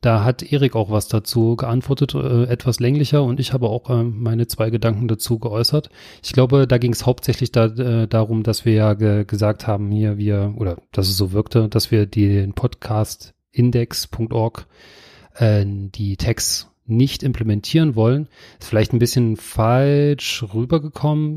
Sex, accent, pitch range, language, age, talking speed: male, German, 105-125 Hz, German, 40-59, 165 wpm